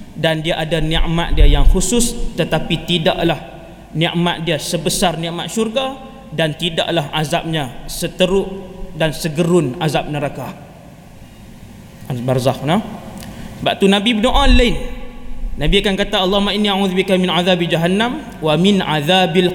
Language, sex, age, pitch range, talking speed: Malay, male, 20-39, 155-195 Hz, 125 wpm